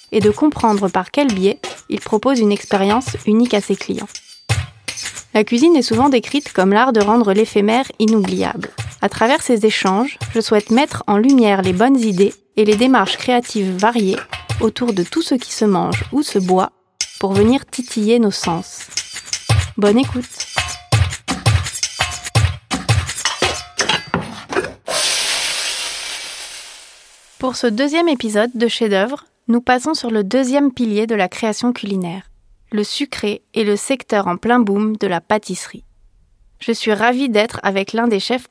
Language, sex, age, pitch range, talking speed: French, female, 30-49, 200-245 Hz, 150 wpm